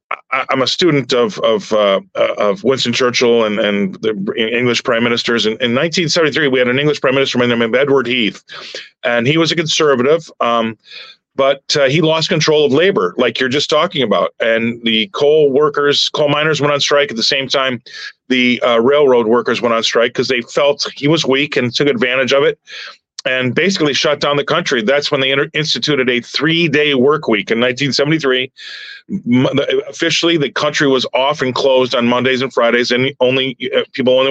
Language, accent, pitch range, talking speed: English, American, 125-150 Hz, 190 wpm